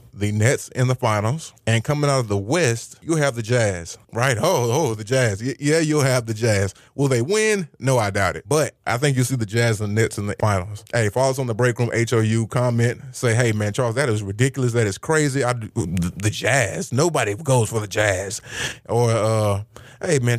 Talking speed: 235 wpm